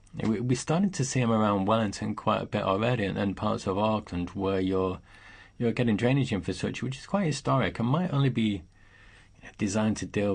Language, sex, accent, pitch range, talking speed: English, male, British, 95-115 Hz, 190 wpm